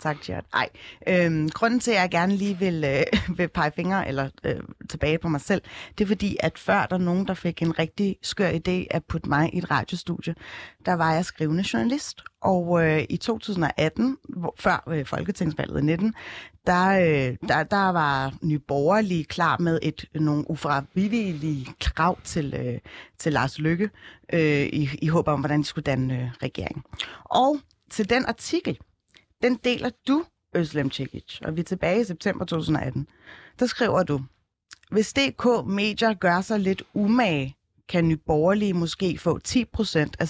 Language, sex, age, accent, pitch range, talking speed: Danish, female, 30-49, native, 150-200 Hz, 170 wpm